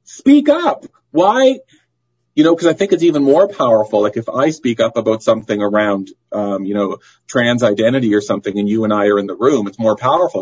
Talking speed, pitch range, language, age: 220 wpm, 110-135 Hz, English, 40-59